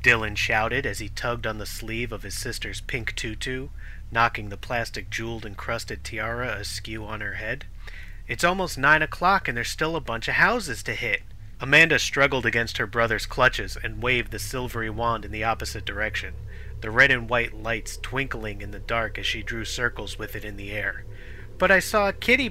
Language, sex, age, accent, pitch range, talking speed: English, male, 30-49, American, 105-125 Hz, 190 wpm